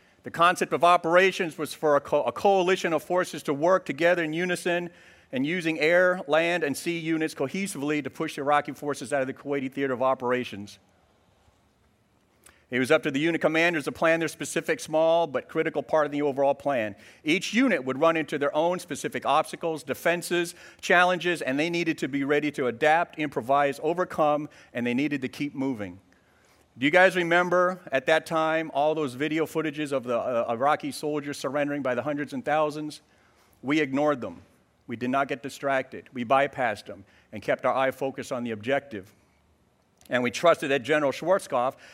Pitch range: 130-160 Hz